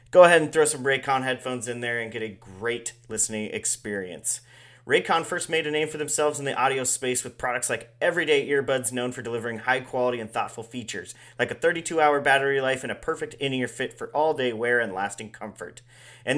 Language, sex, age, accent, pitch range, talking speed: English, male, 30-49, American, 120-150 Hz, 205 wpm